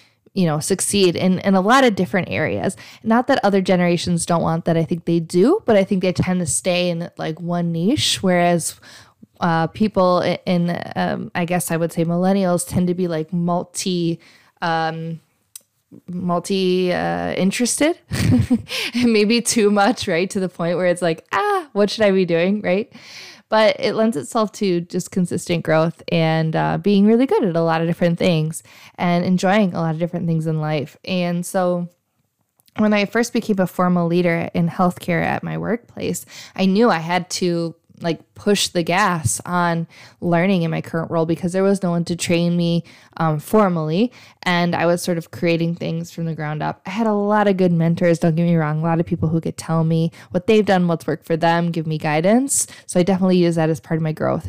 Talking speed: 205 wpm